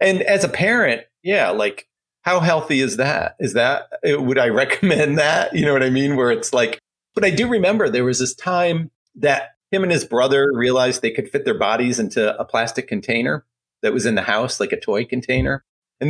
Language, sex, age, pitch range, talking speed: English, male, 40-59, 120-145 Hz, 215 wpm